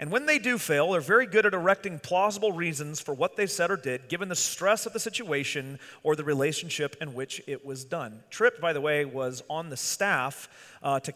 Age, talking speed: 30-49, 225 wpm